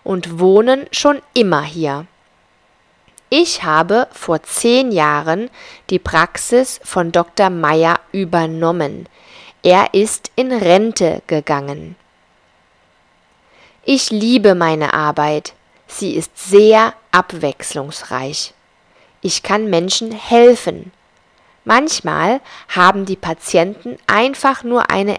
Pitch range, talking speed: 165-240 Hz, 95 wpm